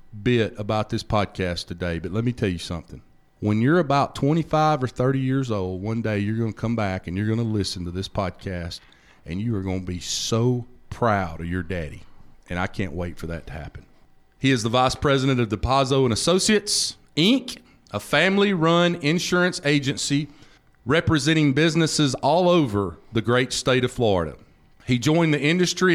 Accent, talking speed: American, 185 wpm